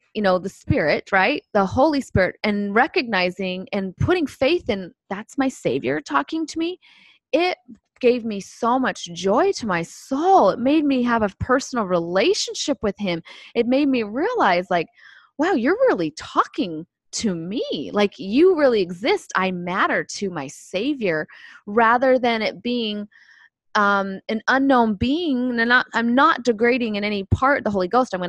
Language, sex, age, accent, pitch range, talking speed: English, female, 20-39, American, 185-260 Hz, 170 wpm